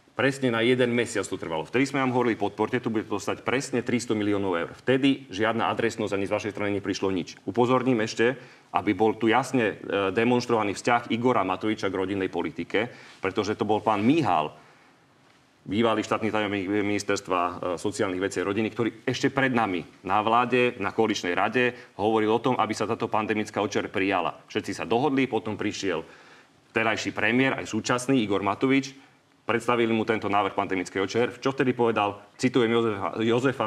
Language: Slovak